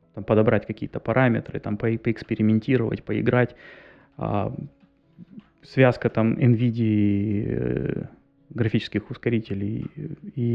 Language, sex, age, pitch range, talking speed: Russian, male, 20-39, 105-125 Hz, 85 wpm